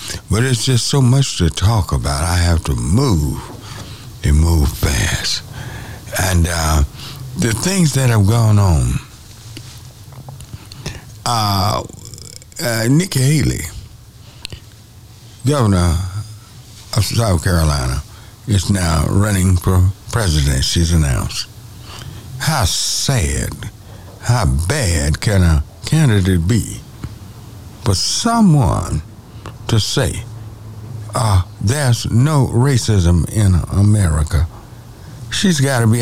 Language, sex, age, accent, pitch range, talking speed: English, male, 60-79, American, 100-125 Hz, 100 wpm